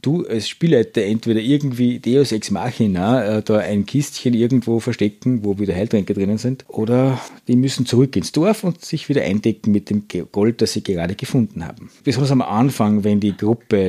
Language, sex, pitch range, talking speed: German, male, 100-130 Hz, 180 wpm